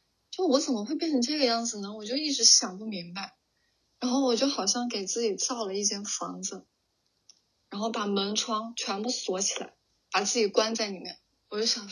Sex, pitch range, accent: female, 200-250 Hz, native